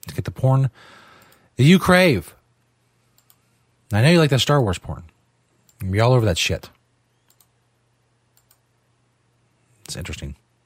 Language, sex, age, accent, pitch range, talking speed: English, male, 40-59, American, 105-150 Hz, 125 wpm